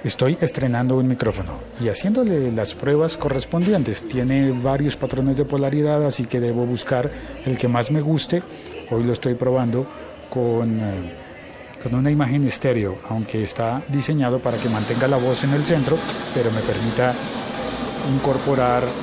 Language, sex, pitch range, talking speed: Spanish, male, 120-150 Hz, 150 wpm